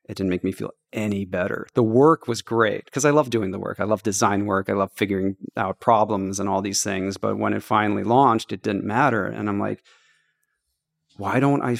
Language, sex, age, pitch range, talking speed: English, male, 40-59, 100-120 Hz, 225 wpm